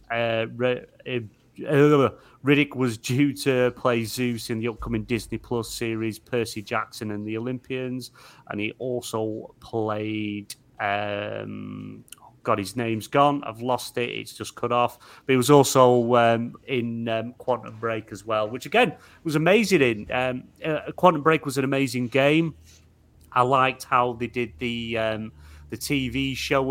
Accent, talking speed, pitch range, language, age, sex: British, 155 wpm, 115-135 Hz, English, 30-49, male